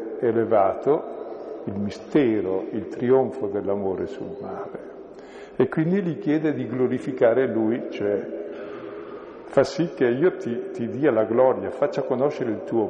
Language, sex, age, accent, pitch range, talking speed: Italian, male, 50-69, native, 115-170 Hz, 135 wpm